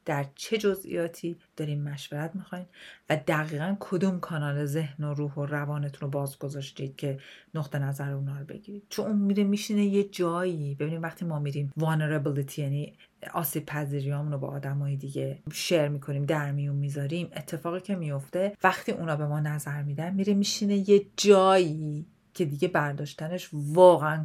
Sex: female